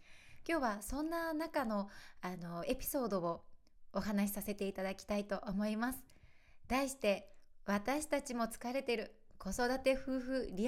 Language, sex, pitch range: Japanese, female, 195-260 Hz